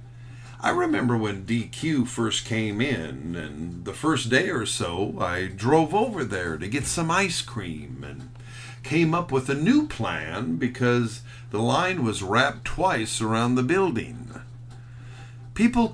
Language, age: English, 50-69